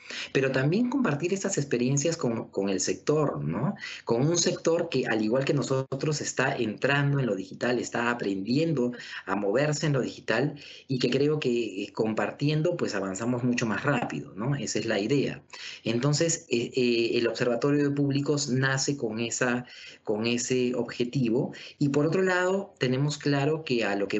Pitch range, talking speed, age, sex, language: 115-145 Hz, 170 wpm, 30-49, male, Spanish